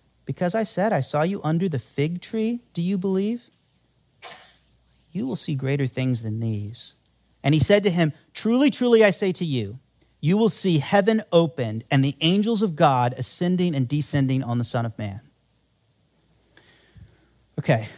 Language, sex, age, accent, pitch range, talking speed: English, male, 40-59, American, 140-205 Hz, 165 wpm